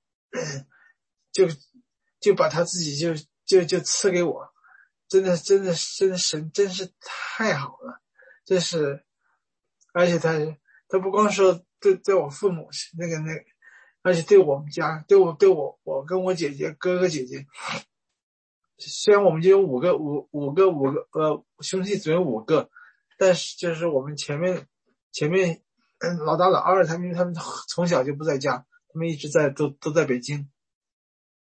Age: 20-39